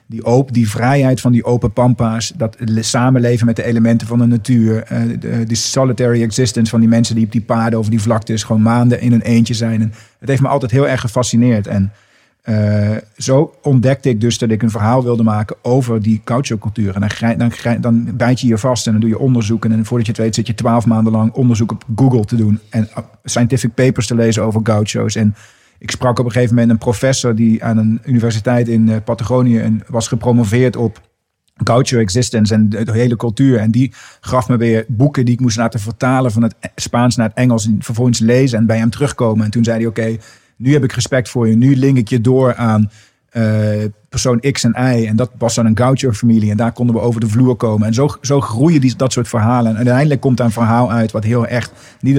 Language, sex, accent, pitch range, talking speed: Dutch, male, Dutch, 110-125 Hz, 230 wpm